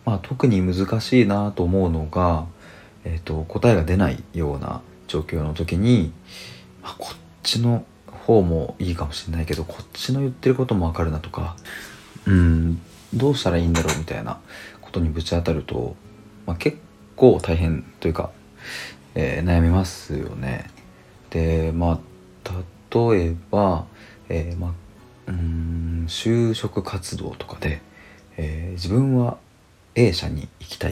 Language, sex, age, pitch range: Japanese, male, 40-59, 80-105 Hz